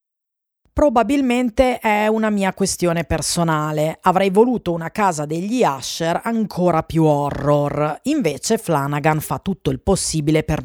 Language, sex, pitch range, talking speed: Italian, female, 145-190 Hz, 125 wpm